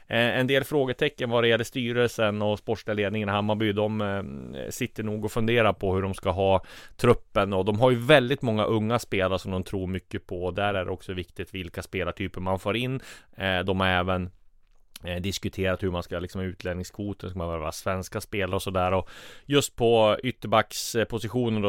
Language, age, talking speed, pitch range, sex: Swedish, 30-49, 175 wpm, 90-110 Hz, male